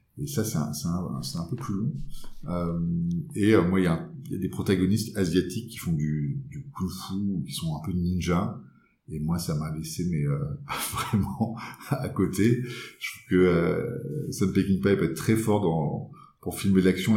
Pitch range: 90-120 Hz